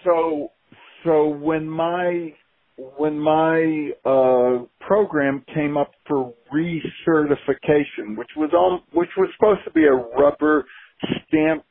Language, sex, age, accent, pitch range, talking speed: English, male, 60-79, American, 125-165 Hz, 120 wpm